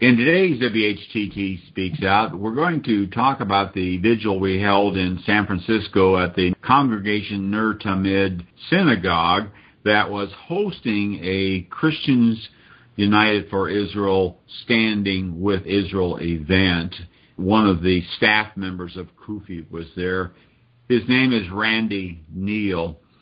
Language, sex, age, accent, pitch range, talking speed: English, male, 50-69, American, 100-125 Hz, 125 wpm